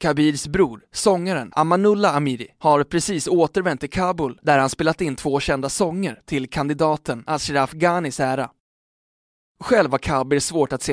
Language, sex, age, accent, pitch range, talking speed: Swedish, male, 20-39, native, 135-170 Hz, 150 wpm